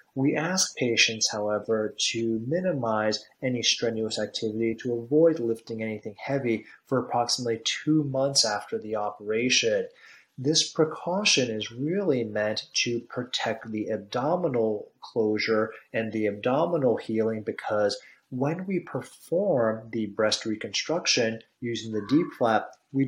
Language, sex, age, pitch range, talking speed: English, male, 30-49, 110-135 Hz, 120 wpm